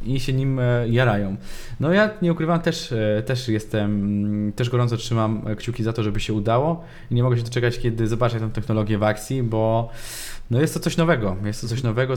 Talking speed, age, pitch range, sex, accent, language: 200 wpm, 20-39, 105-120 Hz, male, native, Polish